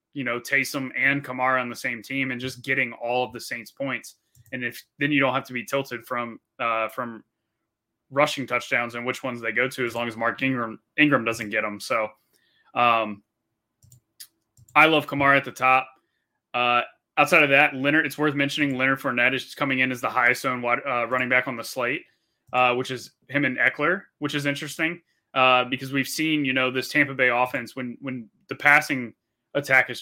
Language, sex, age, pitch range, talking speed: English, male, 20-39, 120-135 Hz, 205 wpm